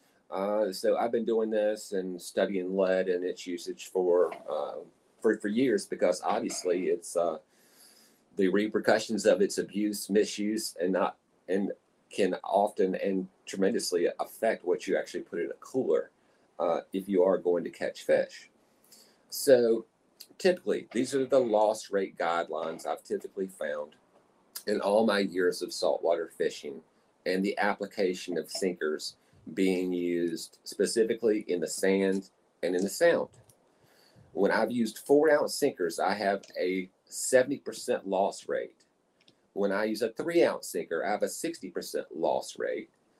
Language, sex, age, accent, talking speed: English, male, 40-59, American, 145 wpm